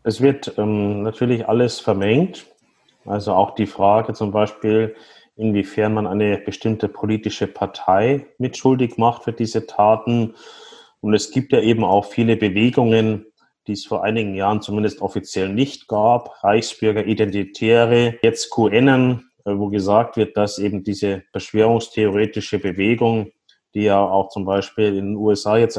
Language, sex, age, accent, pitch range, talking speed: German, male, 30-49, German, 105-120 Hz, 140 wpm